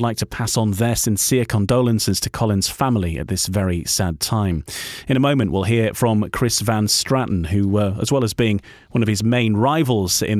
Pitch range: 100-130 Hz